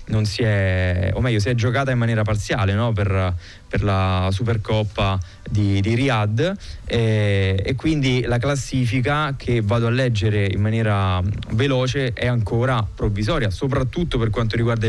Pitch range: 105-125 Hz